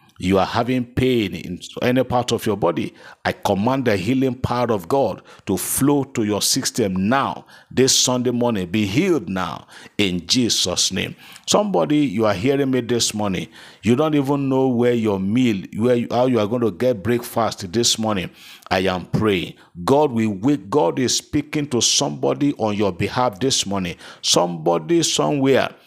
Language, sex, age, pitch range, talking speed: English, male, 50-69, 100-130 Hz, 170 wpm